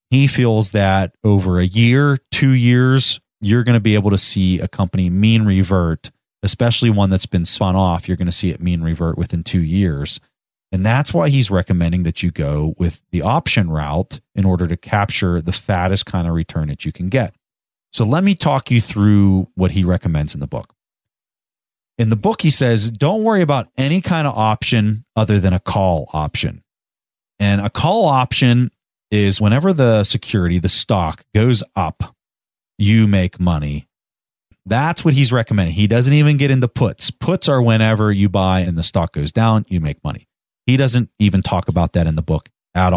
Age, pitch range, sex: 30-49, 90-120 Hz, male